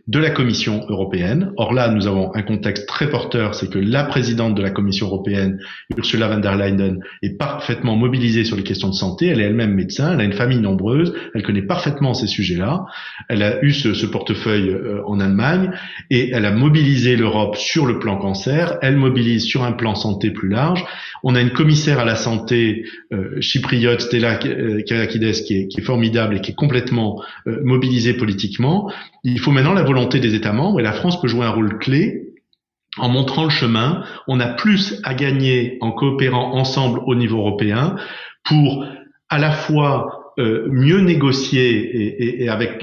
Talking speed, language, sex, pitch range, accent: 195 wpm, French, male, 110-145 Hz, French